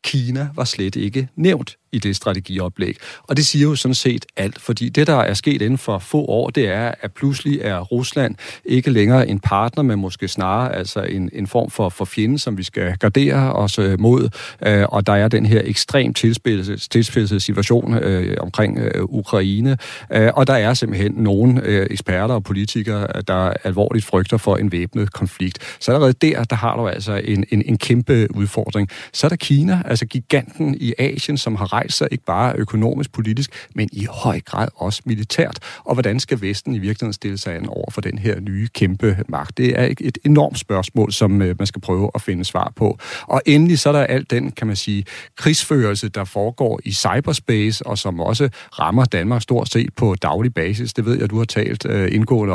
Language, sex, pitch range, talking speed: Danish, male, 100-130 Hz, 195 wpm